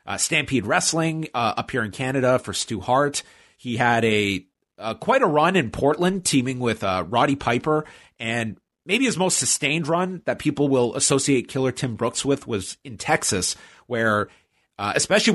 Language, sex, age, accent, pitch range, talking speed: English, male, 30-49, American, 110-140 Hz, 175 wpm